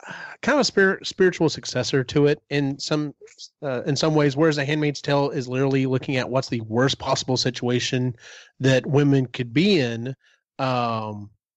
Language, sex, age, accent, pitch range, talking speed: English, male, 30-49, American, 125-160 Hz, 170 wpm